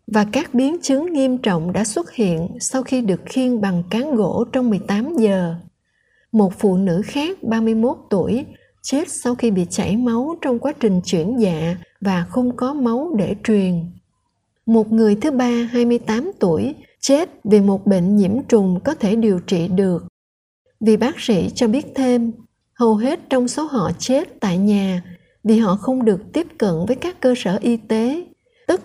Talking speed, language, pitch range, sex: 180 wpm, Vietnamese, 195-250 Hz, female